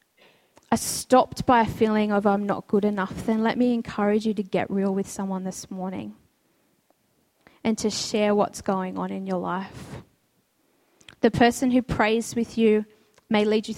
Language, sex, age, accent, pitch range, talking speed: English, female, 10-29, Australian, 195-230 Hz, 175 wpm